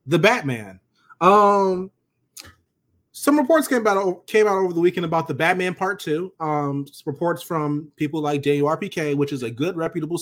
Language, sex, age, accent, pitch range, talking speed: English, male, 20-39, American, 135-185 Hz, 170 wpm